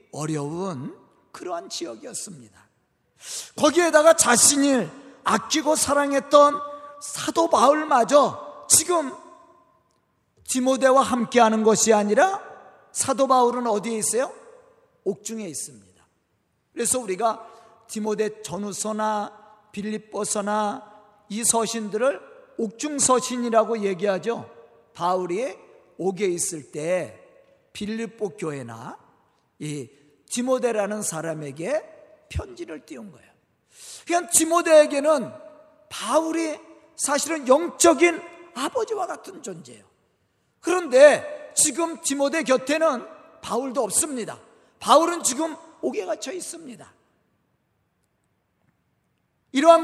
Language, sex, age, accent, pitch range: Korean, male, 40-59, native, 215-315 Hz